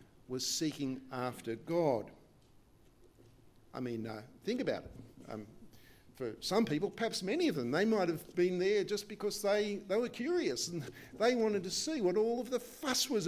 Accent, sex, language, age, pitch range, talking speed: Australian, male, English, 50-69, 140-215 Hz, 180 wpm